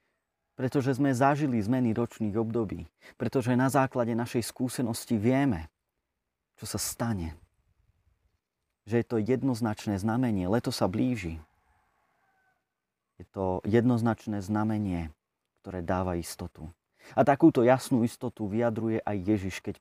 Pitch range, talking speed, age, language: 95-125 Hz, 115 wpm, 30-49, Slovak